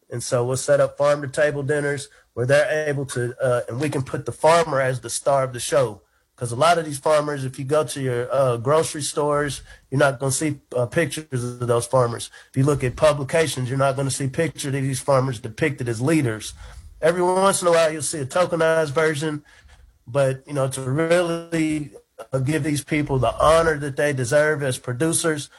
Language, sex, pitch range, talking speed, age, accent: English, male, 130-155 Hz, 205 wpm, 30-49, American